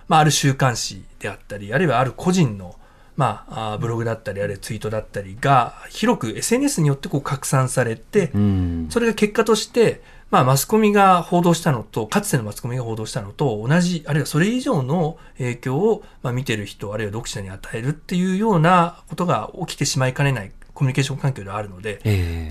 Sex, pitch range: male, 115-180 Hz